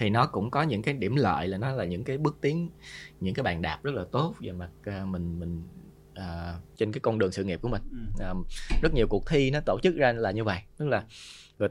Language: Vietnamese